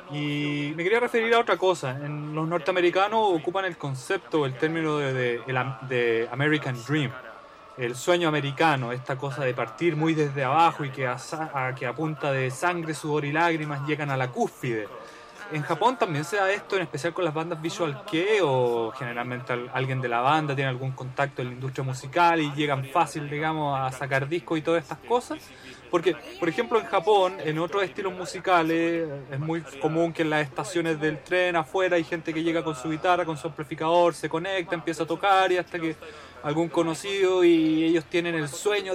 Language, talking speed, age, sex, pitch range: Spanish, 195 wpm, 20-39, male, 145-185 Hz